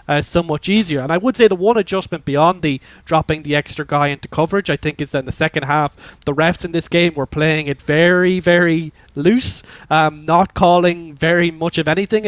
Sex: male